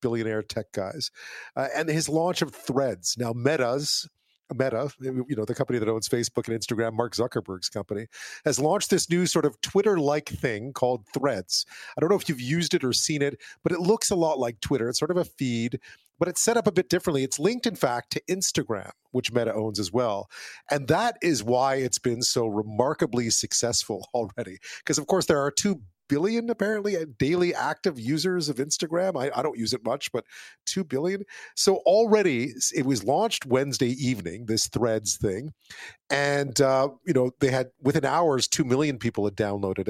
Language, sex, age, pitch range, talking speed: English, male, 40-59, 120-165 Hz, 195 wpm